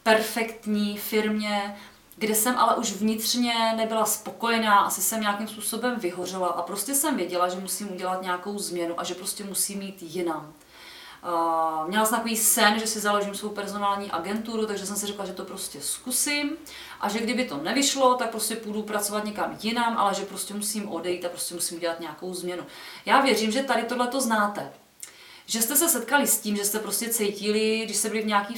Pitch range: 195-230 Hz